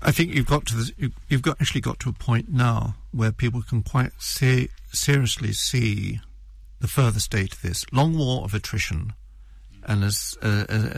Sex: male